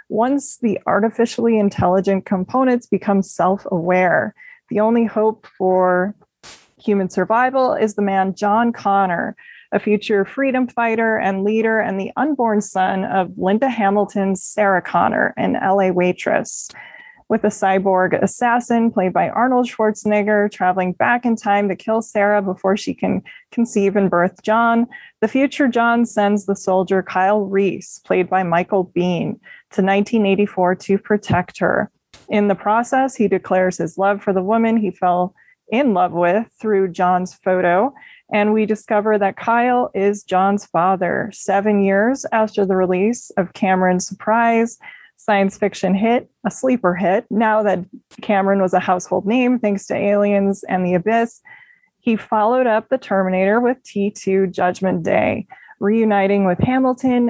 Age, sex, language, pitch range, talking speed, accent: 20-39, female, English, 195-230 Hz, 150 wpm, American